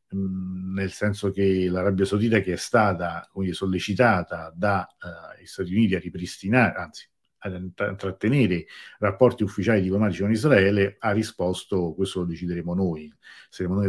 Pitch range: 90-105 Hz